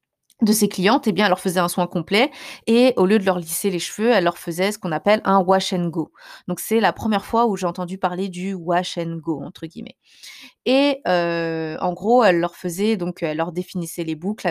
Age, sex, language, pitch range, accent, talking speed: 20-39, female, French, 180-230 Hz, French, 235 wpm